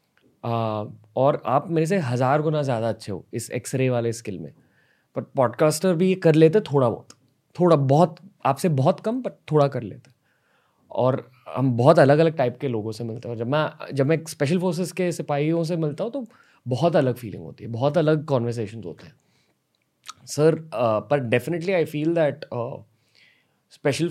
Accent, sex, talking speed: native, male, 180 wpm